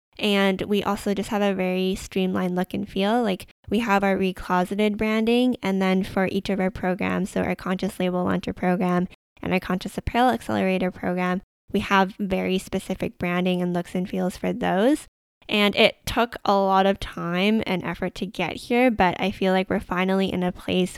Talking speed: 195 wpm